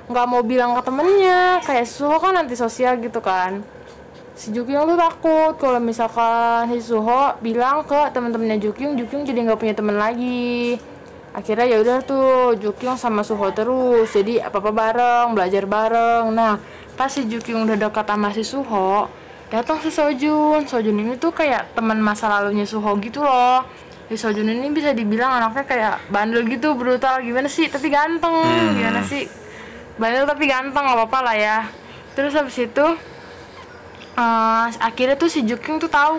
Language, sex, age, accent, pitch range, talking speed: Indonesian, female, 20-39, native, 225-285 Hz, 165 wpm